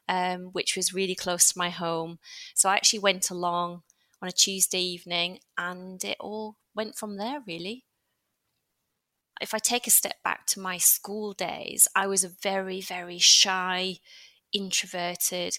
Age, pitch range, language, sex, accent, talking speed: 30-49, 180-210 Hz, English, female, British, 160 wpm